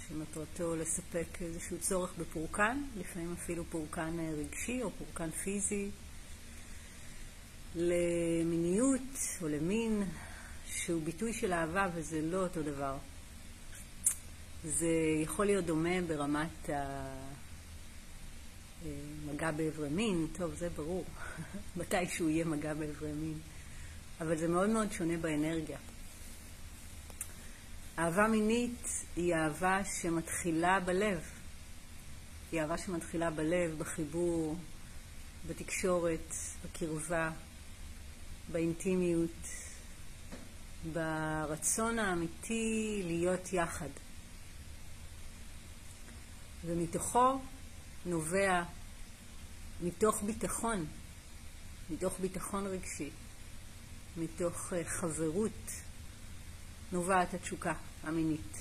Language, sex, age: Hebrew, female, 40-59